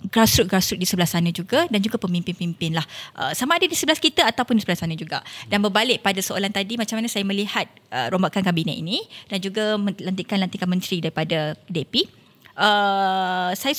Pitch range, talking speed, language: 180-220 Hz, 180 wpm, Malay